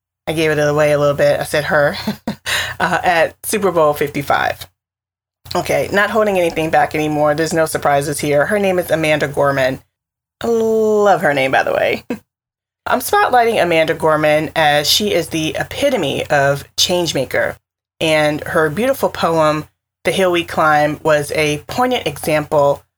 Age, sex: 20-39, female